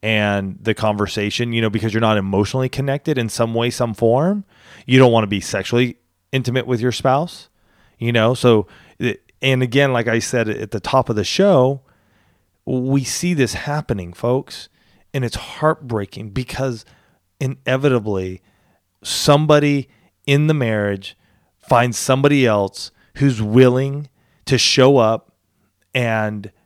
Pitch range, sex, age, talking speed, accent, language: 110-135 Hz, male, 30-49, 140 wpm, American, English